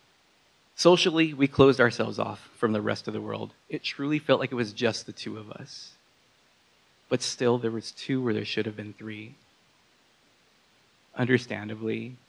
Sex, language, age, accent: male, English, 30-49, American